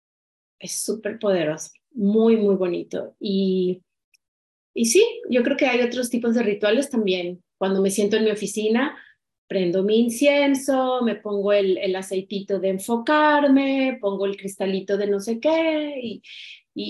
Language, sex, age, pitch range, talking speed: Spanish, female, 30-49, 190-250 Hz, 155 wpm